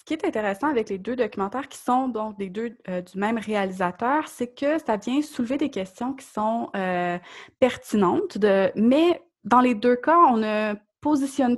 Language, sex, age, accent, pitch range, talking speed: French, female, 20-39, Canadian, 195-255 Hz, 195 wpm